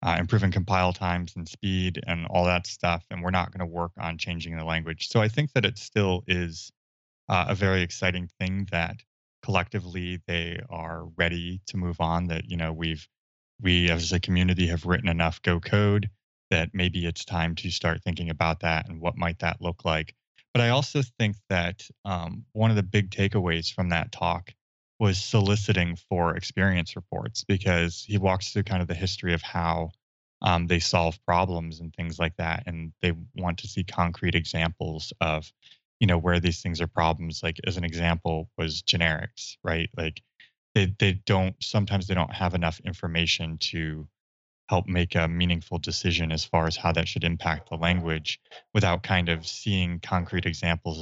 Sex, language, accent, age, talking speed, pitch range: male, English, American, 20-39, 185 wpm, 85-95 Hz